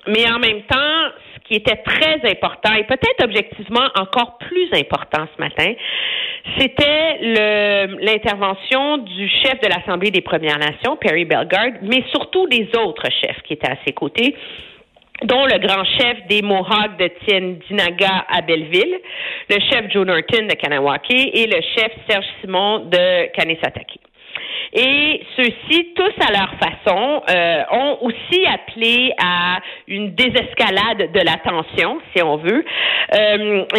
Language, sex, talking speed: French, female, 145 wpm